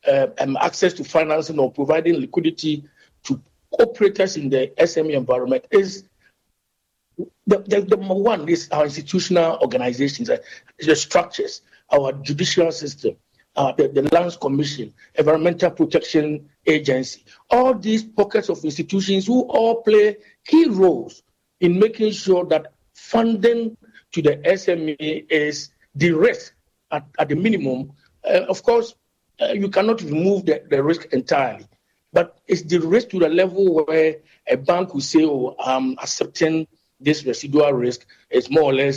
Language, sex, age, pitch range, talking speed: English, male, 50-69, 145-215 Hz, 145 wpm